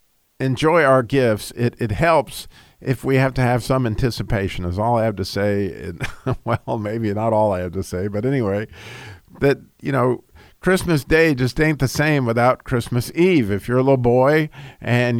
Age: 50-69